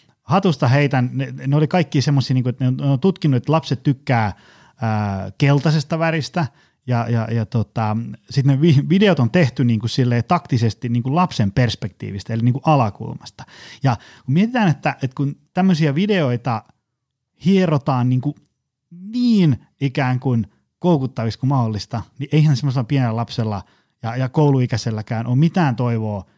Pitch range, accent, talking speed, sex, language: 120-155 Hz, native, 150 wpm, male, Finnish